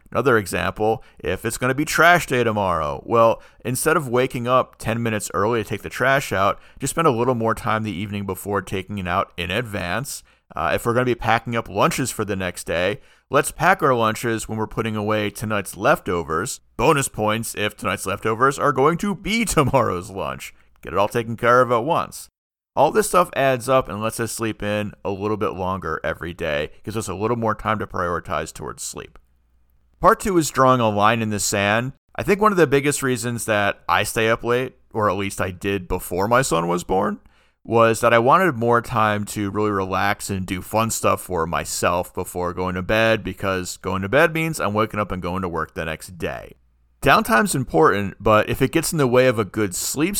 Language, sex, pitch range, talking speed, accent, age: English, male, 100-125 Hz, 220 wpm, American, 40-59